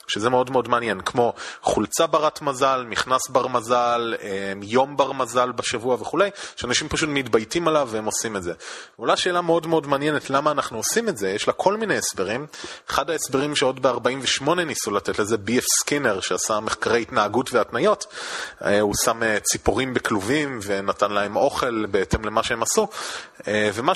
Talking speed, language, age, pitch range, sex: 160 wpm, Hebrew, 30-49, 125-160 Hz, male